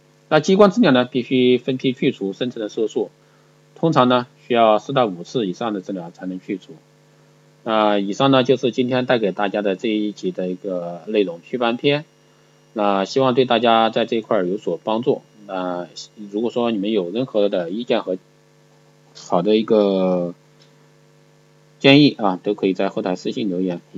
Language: Chinese